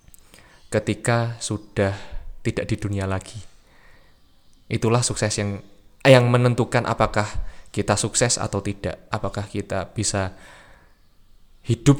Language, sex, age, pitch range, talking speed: Indonesian, male, 20-39, 100-125 Hz, 100 wpm